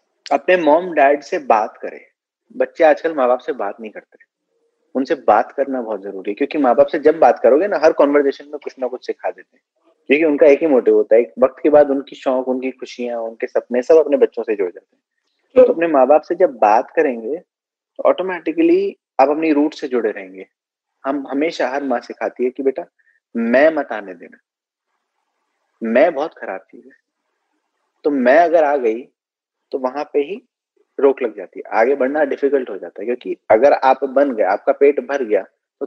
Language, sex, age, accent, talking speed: Hindi, male, 30-49, native, 205 wpm